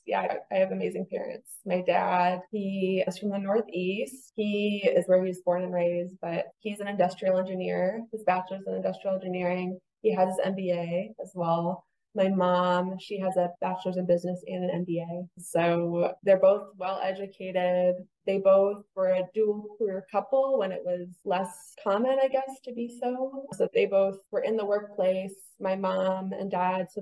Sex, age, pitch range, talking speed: female, 20-39, 180-200 Hz, 180 wpm